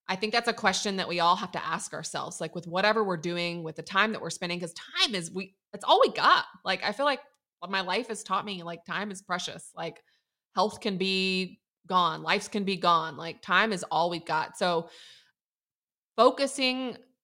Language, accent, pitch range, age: English, American, 165-195 Hz, 20-39